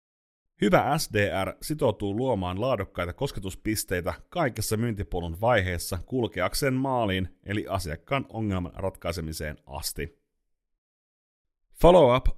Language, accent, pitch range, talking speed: Finnish, native, 85-120 Hz, 80 wpm